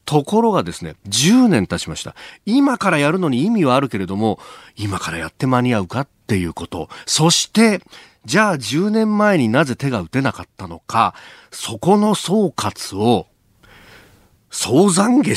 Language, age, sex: Japanese, 40-59, male